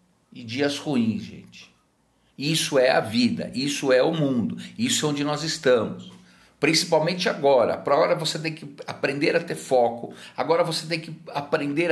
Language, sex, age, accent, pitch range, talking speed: Portuguese, male, 50-69, Brazilian, 130-175 Hz, 165 wpm